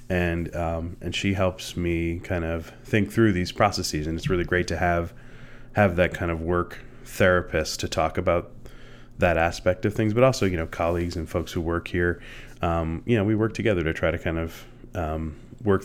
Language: English